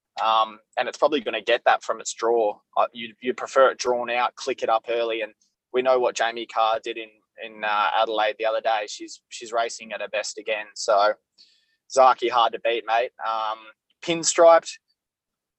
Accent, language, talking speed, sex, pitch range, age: Australian, English, 195 wpm, male, 115-155 Hz, 20-39